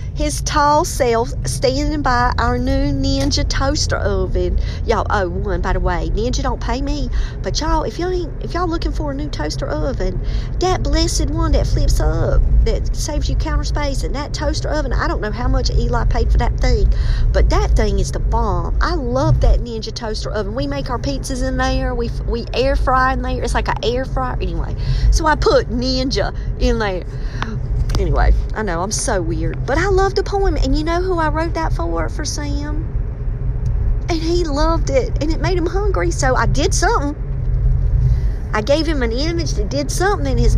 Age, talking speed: 40-59, 205 wpm